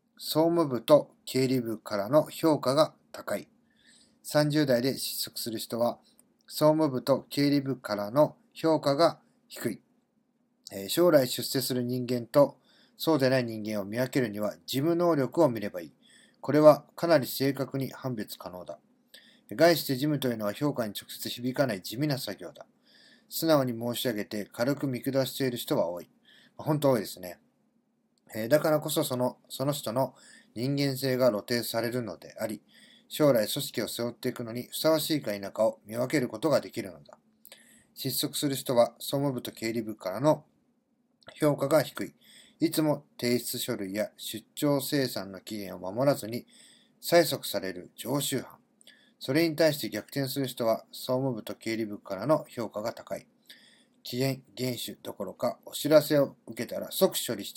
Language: Japanese